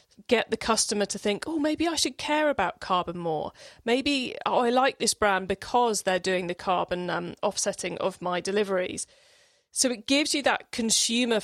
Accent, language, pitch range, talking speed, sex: British, English, 195-235 Hz, 185 wpm, female